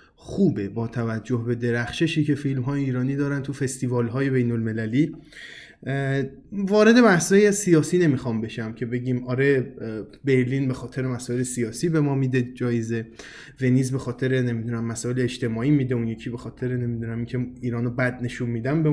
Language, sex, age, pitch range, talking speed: Persian, male, 20-39, 125-160 Hz, 160 wpm